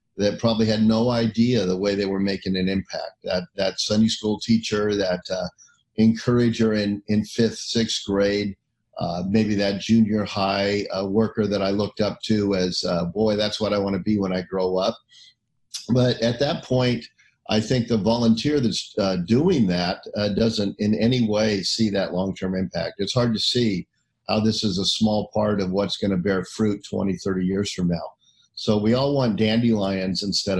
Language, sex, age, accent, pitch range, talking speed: English, male, 50-69, American, 100-115 Hz, 190 wpm